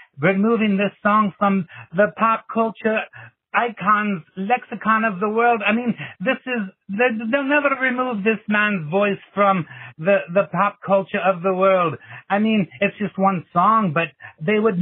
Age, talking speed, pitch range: 60-79, 160 wpm, 165-200 Hz